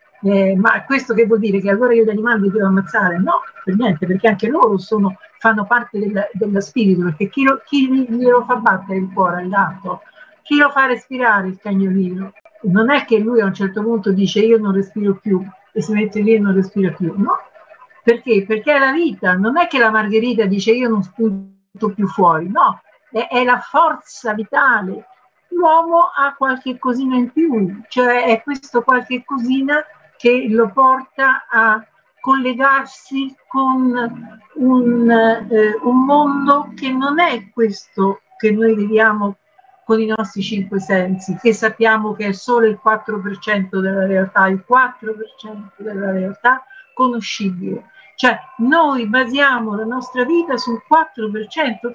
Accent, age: native, 50-69